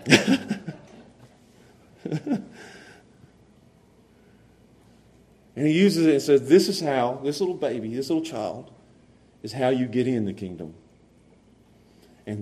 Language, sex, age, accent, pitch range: English, male, 40-59, American, 100-135 Hz